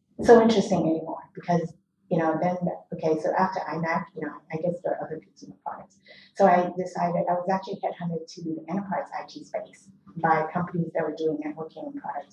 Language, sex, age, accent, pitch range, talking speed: English, female, 30-49, American, 165-195 Hz, 200 wpm